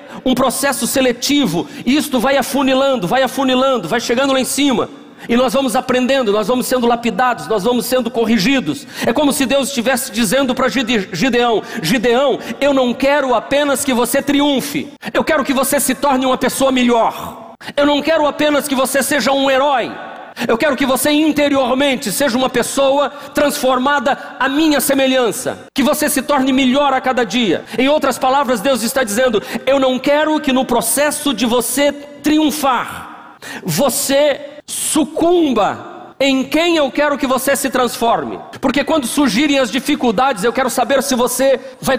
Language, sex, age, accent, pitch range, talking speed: Portuguese, male, 40-59, Brazilian, 245-280 Hz, 165 wpm